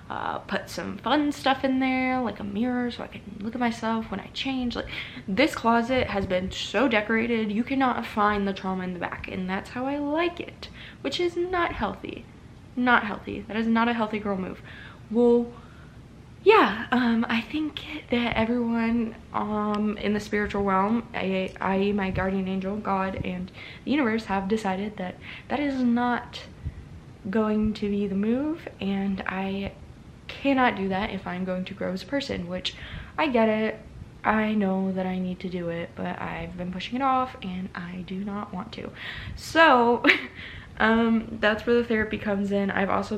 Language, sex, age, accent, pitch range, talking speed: English, female, 20-39, American, 195-240 Hz, 185 wpm